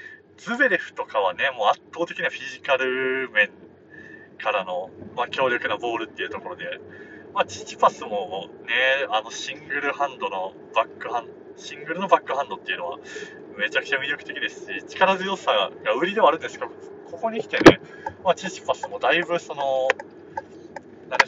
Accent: native